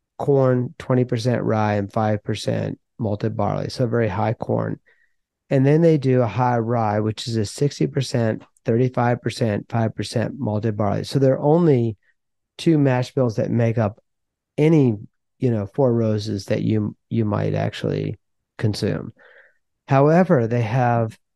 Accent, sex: American, male